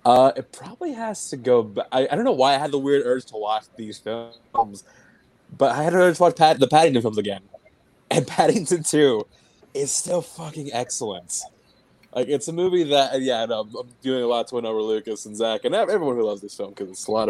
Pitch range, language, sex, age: 120-165 Hz, English, male, 20-39